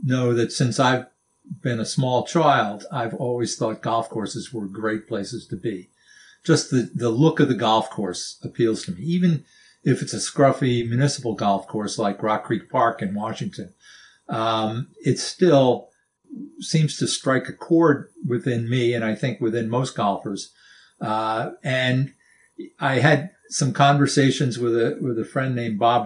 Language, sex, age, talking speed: English, male, 50-69, 165 wpm